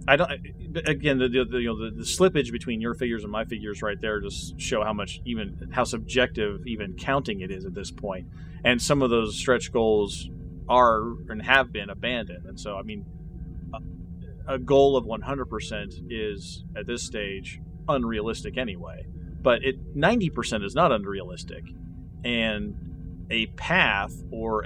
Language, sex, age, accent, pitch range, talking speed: English, male, 30-49, American, 85-125 Hz, 165 wpm